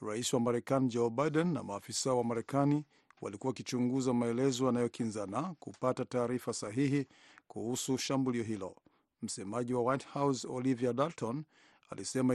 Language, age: Swahili, 50-69